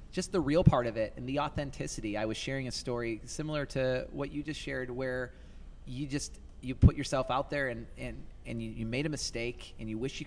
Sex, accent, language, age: male, American, English, 30-49